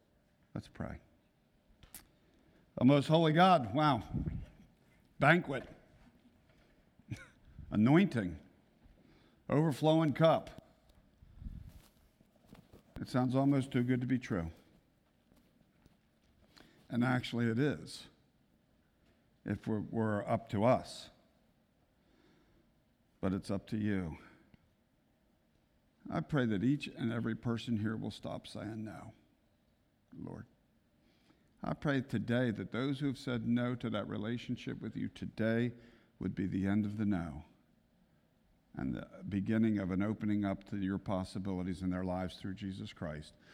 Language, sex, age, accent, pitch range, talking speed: English, male, 50-69, American, 95-125 Hz, 115 wpm